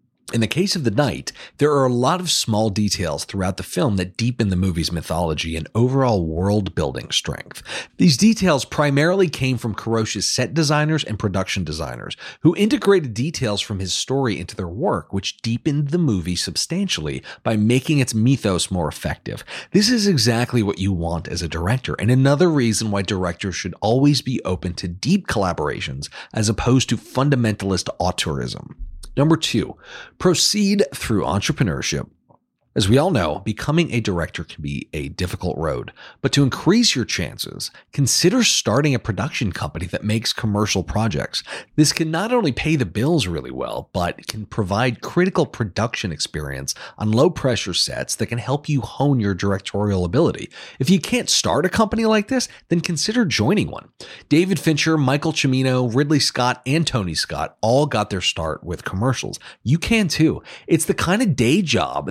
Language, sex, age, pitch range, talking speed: English, male, 40-59, 95-155 Hz, 170 wpm